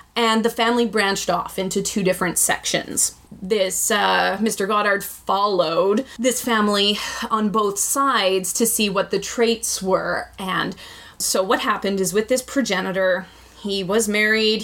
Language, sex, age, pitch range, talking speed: English, female, 20-39, 190-230 Hz, 150 wpm